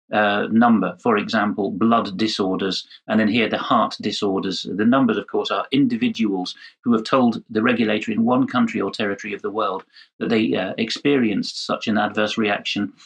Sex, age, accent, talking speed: male, 40-59, British, 180 wpm